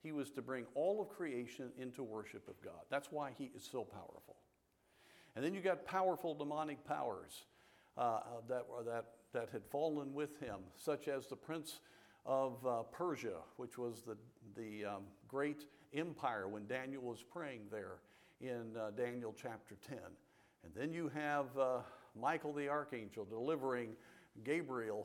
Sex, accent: male, American